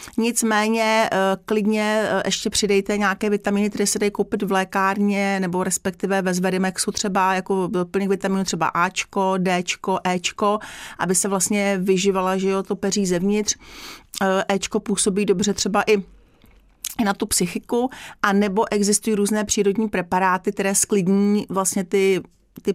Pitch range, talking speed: 190-210 Hz, 135 wpm